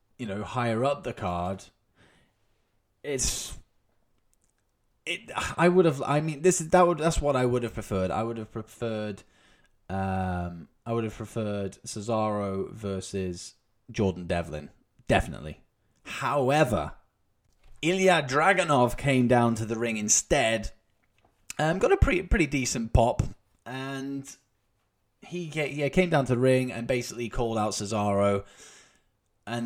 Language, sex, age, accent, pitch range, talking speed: English, male, 20-39, British, 100-125 Hz, 135 wpm